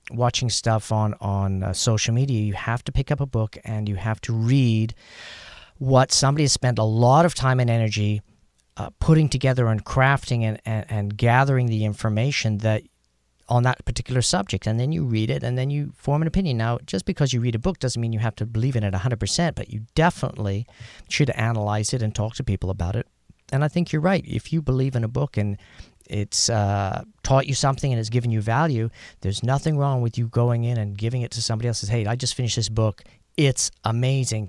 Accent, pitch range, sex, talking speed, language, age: American, 110-135 Hz, male, 225 wpm, English, 40-59